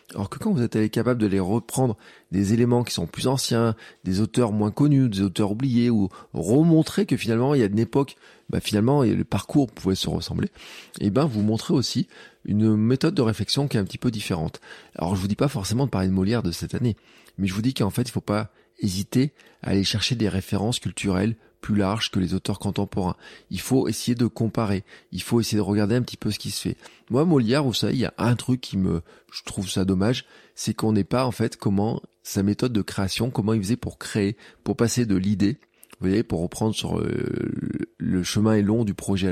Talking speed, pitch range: 235 wpm, 100-120 Hz